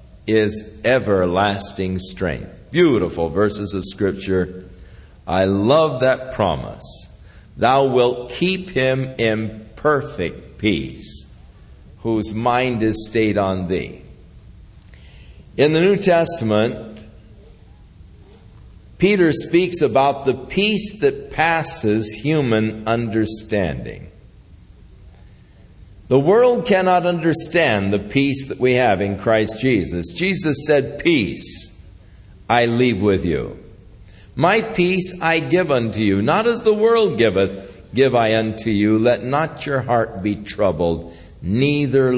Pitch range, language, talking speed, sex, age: 95-150 Hz, English, 110 wpm, male, 50-69